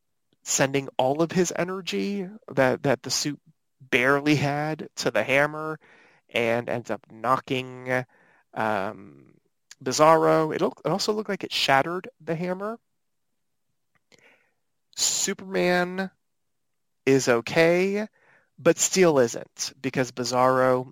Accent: American